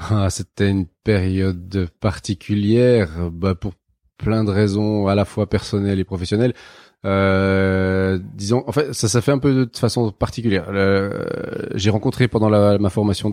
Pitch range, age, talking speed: 95-110 Hz, 30-49, 160 wpm